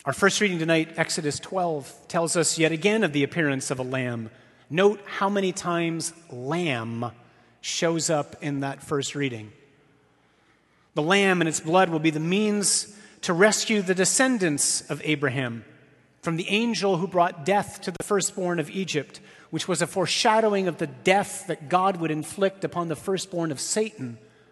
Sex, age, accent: male, 30-49, American